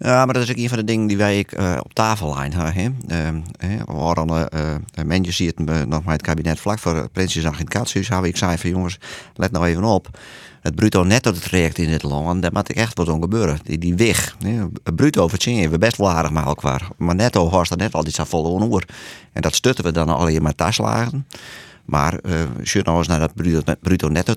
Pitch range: 80-100 Hz